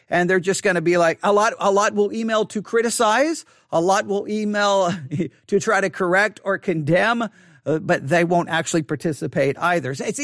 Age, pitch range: 40-59, 170-225 Hz